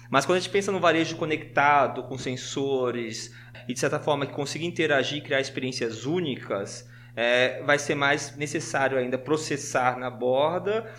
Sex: male